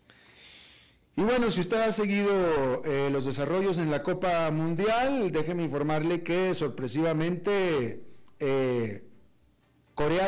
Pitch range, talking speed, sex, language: 140-195 Hz, 110 wpm, male, Spanish